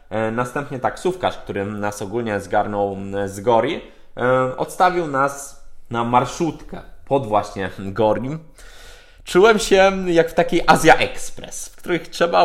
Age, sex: 20-39, male